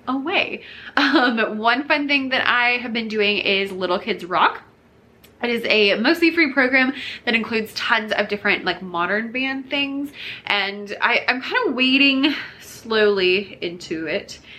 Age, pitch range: 20-39, 185-235 Hz